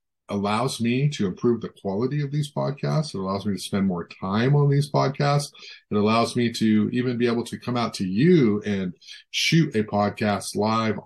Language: English